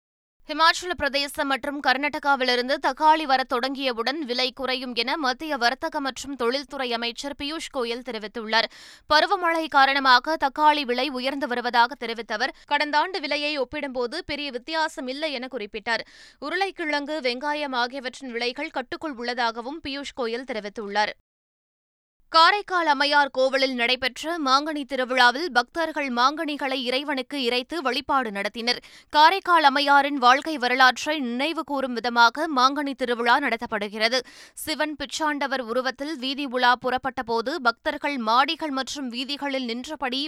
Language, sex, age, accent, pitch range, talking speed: Tamil, female, 20-39, native, 250-300 Hz, 110 wpm